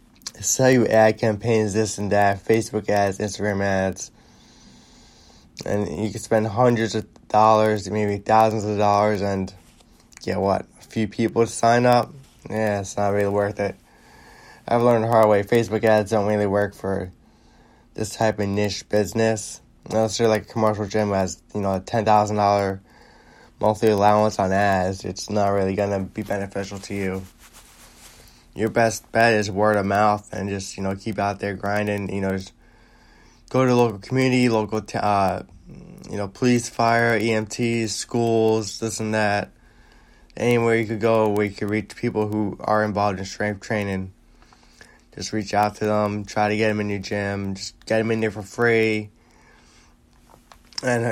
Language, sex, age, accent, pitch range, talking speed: English, male, 10-29, American, 100-115 Hz, 175 wpm